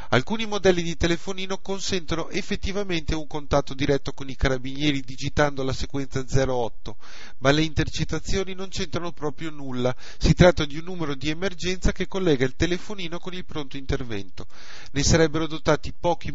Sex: male